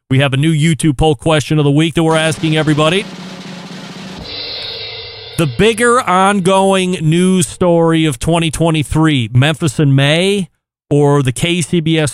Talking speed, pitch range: 135 wpm, 125-170 Hz